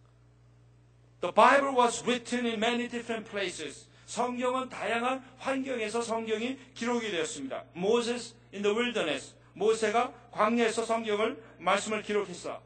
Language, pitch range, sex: Korean, 170-240 Hz, male